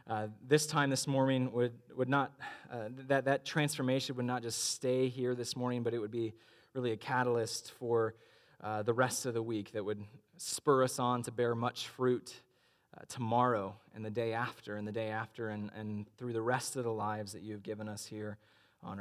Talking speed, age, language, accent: 210 wpm, 20-39, English, American